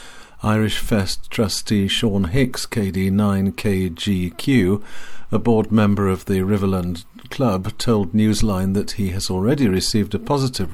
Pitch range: 95-115 Hz